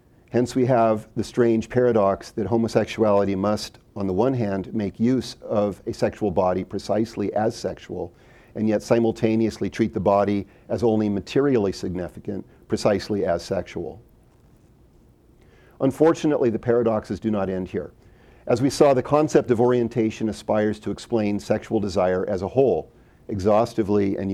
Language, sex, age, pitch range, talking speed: English, male, 40-59, 105-120 Hz, 145 wpm